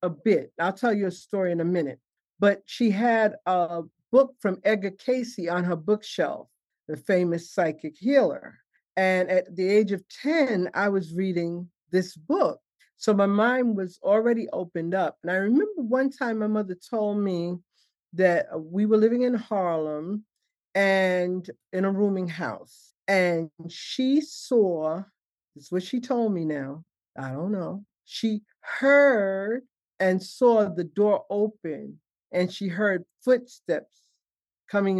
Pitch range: 170-215 Hz